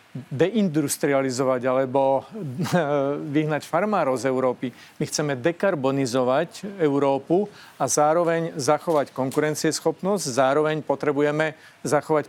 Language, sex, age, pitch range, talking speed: Slovak, male, 40-59, 140-160 Hz, 85 wpm